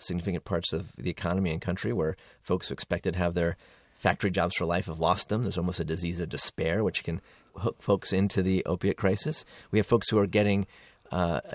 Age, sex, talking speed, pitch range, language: 30-49, male, 215 wpm, 90-105 Hz, English